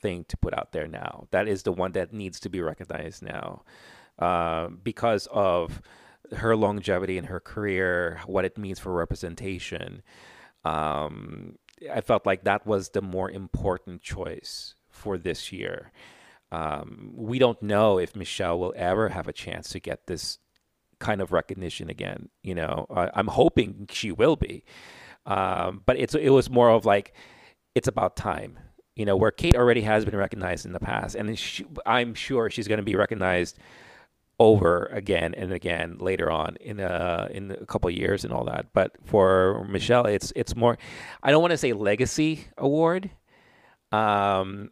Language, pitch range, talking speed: English, 90-115 Hz, 170 wpm